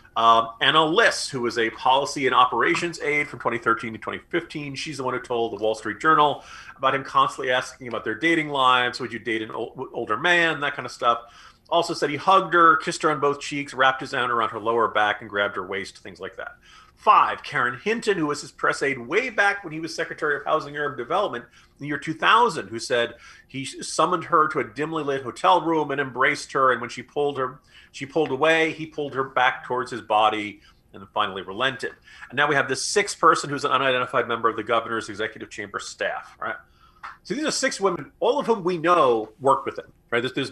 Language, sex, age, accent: English, male, 40-59, American